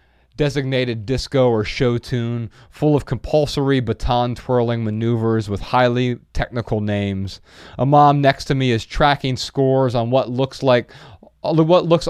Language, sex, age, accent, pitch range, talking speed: English, male, 30-49, American, 110-130 Hz, 145 wpm